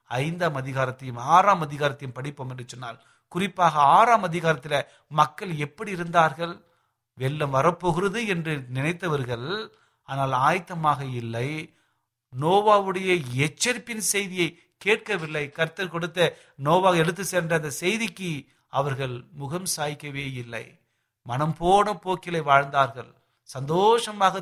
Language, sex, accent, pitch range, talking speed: Tamil, male, native, 125-175 Hz, 100 wpm